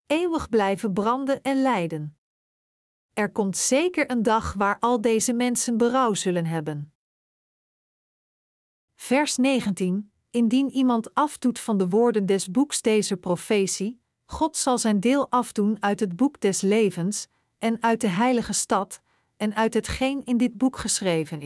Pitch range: 200-250 Hz